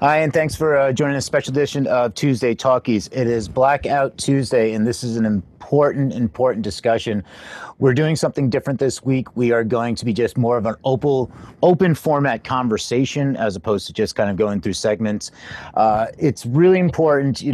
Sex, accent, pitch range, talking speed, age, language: male, American, 115-140 Hz, 190 wpm, 30-49, English